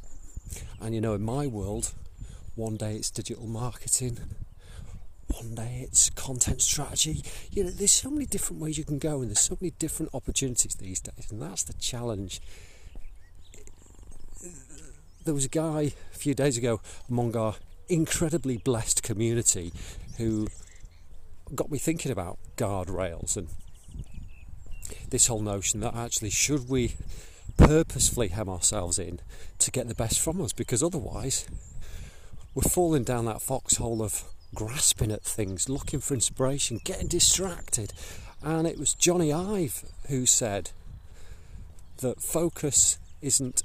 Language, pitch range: English, 90-130 Hz